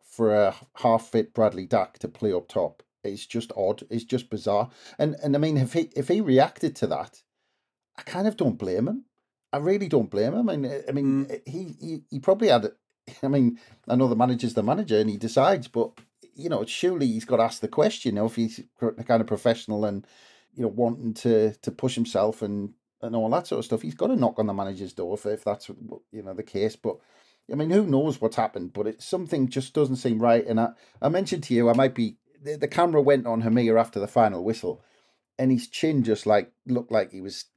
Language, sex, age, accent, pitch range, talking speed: English, male, 40-59, British, 110-140 Hz, 235 wpm